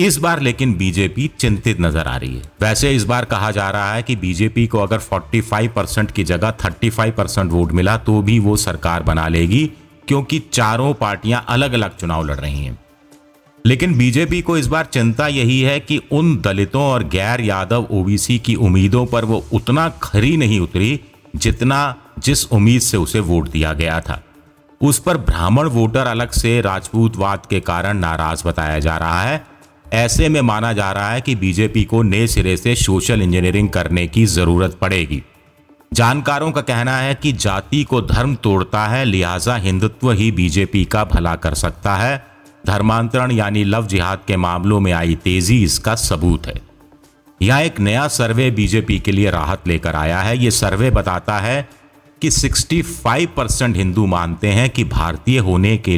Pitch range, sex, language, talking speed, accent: 95-125 Hz, male, Hindi, 170 wpm, native